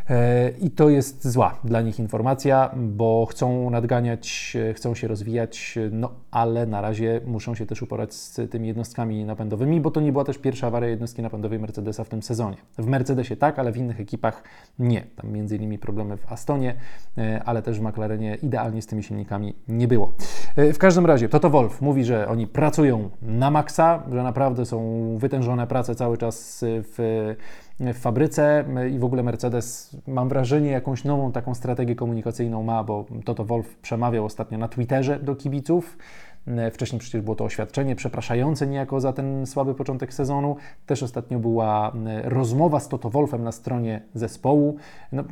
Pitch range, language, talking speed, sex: 115-135 Hz, Polish, 165 wpm, male